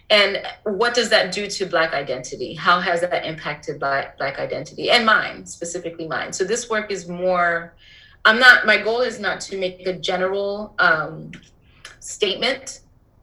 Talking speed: 165 wpm